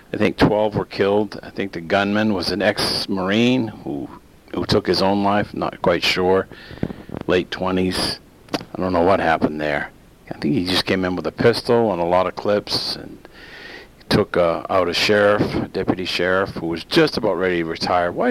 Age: 50-69